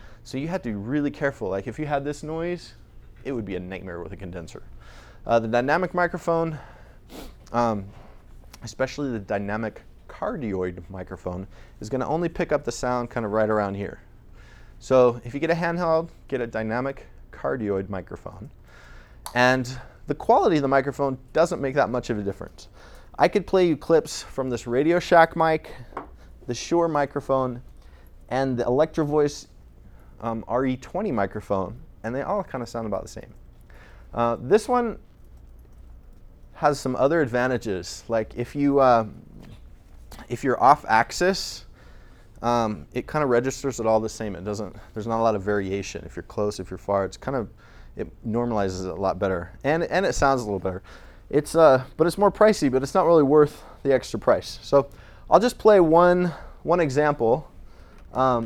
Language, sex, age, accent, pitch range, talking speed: English, male, 30-49, American, 105-150 Hz, 175 wpm